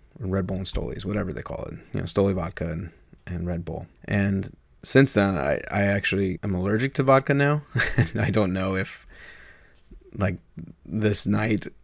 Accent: American